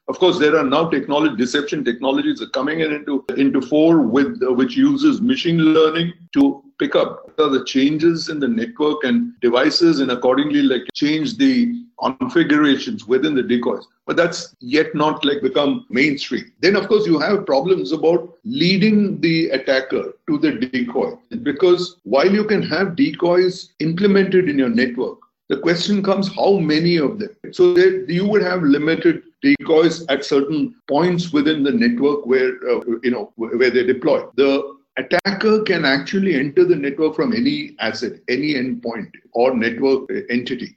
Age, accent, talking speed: 50-69, Indian, 165 wpm